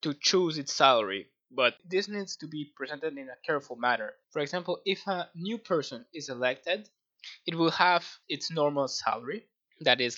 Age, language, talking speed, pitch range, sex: 20-39, English, 175 wpm, 135-175 Hz, male